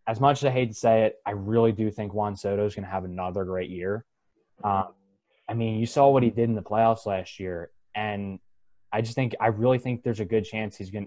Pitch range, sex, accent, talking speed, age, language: 100-115 Hz, male, American, 260 wpm, 20-39, English